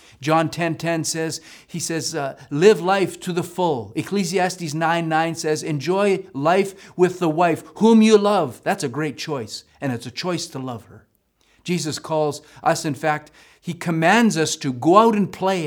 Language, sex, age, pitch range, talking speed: English, male, 50-69, 130-185 Hz, 175 wpm